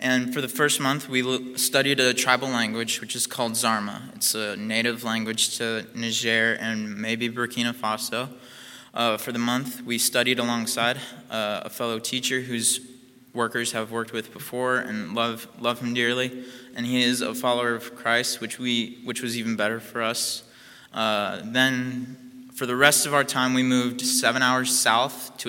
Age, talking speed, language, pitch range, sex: 20-39, 175 wpm, English, 115-125 Hz, male